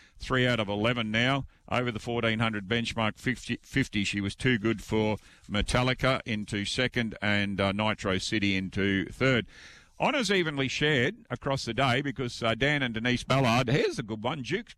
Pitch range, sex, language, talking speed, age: 110-135 Hz, male, English, 170 wpm, 50-69